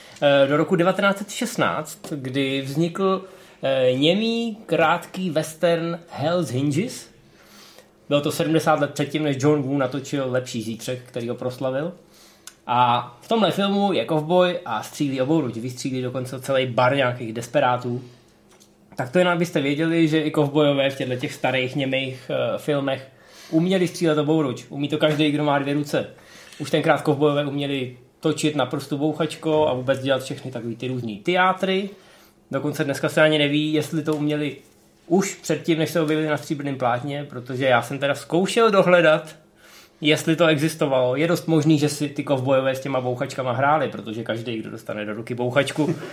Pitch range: 130-160 Hz